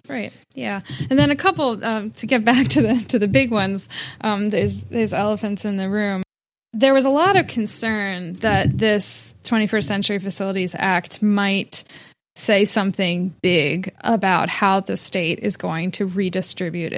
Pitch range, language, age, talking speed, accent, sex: 190-220 Hz, English, 10-29, 165 wpm, American, female